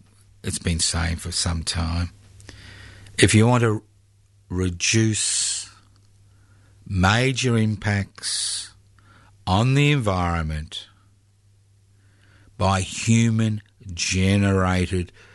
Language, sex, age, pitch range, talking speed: English, male, 50-69, 90-110 Hz, 75 wpm